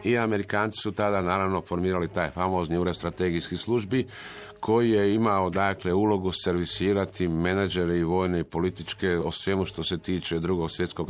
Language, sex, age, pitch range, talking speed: Croatian, male, 50-69, 90-105 Hz, 155 wpm